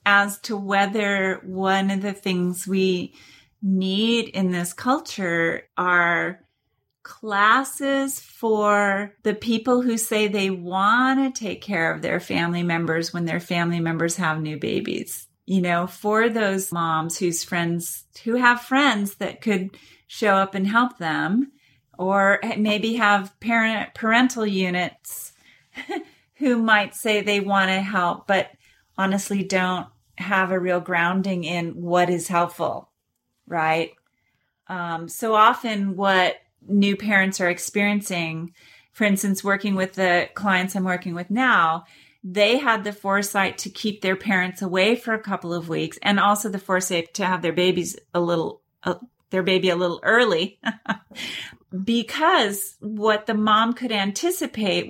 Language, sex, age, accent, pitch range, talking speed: English, female, 30-49, American, 180-215 Hz, 140 wpm